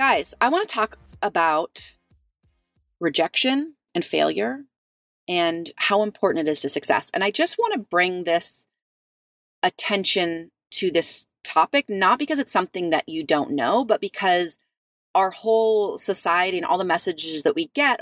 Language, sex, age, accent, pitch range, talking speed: English, female, 30-49, American, 160-220 Hz, 155 wpm